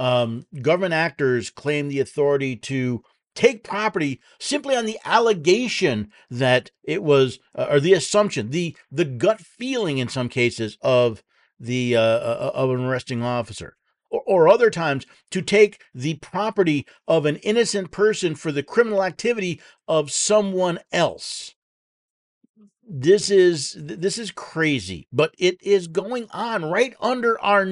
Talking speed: 145 wpm